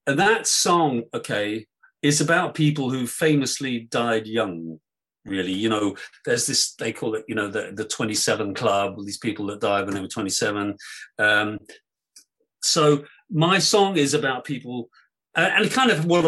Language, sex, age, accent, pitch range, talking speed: English, male, 40-59, British, 110-155 Hz, 165 wpm